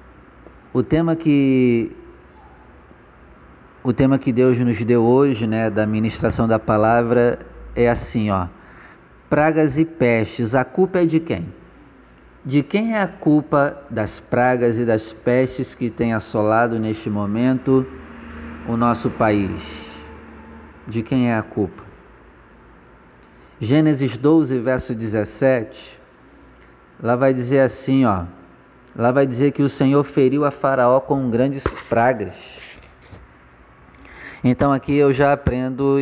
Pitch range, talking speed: 100-135 Hz, 125 wpm